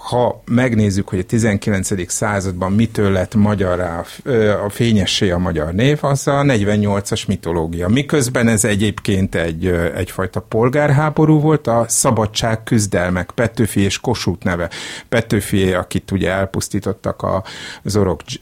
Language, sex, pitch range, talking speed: Hungarian, male, 95-120 Hz, 125 wpm